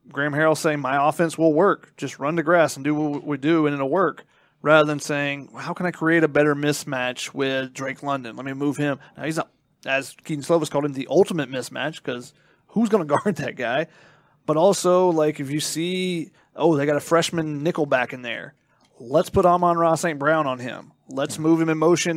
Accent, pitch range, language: American, 145-170 Hz, English